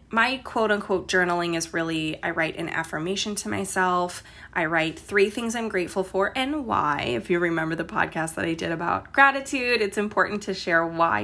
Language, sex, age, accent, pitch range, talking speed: English, female, 20-39, American, 170-215 Hz, 190 wpm